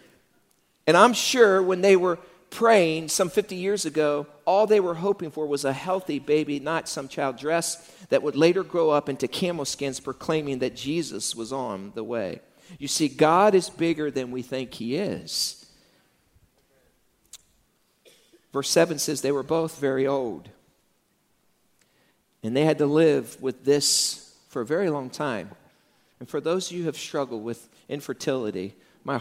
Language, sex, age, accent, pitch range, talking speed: English, male, 50-69, American, 140-195 Hz, 165 wpm